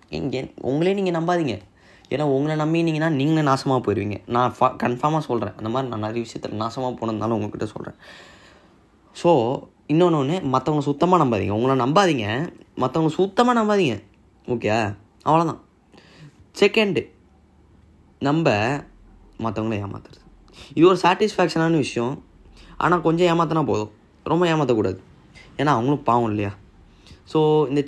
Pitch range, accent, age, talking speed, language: 115-160 Hz, native, 10-29, 125 wpm, Tamil